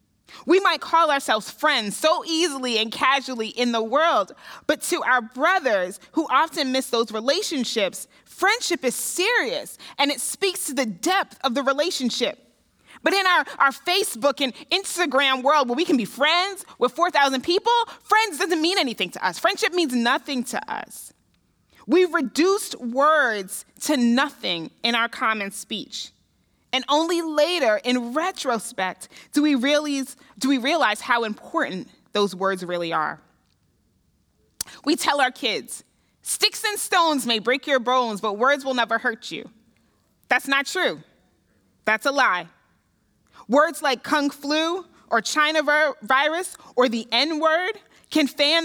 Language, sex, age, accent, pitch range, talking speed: English, female, 30-49, American, 240-330 Hz, 145 wpm